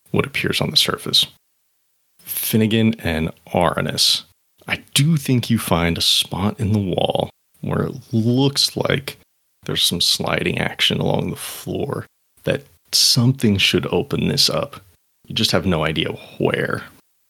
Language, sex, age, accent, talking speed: English, male, 30-49, American, 140 wpm